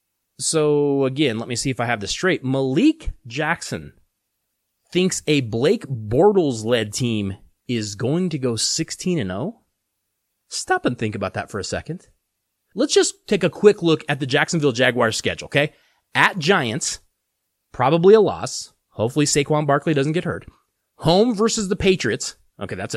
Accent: American